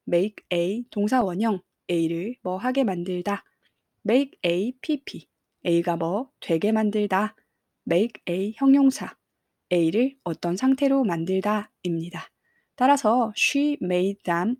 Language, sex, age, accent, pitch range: Korean, female, 20-39, native, 185-240 Hz